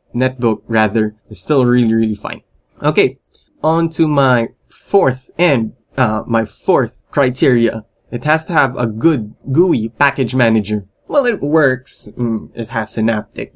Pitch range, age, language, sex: 115-140 Hz, 20-39, English, male